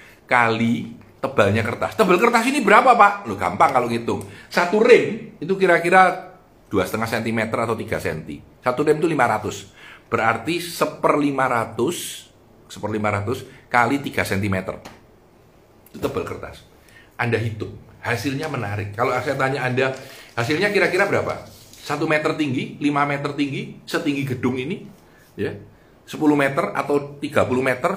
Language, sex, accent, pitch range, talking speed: Indonesian, male, native, 115-155 Hz, 135 wpm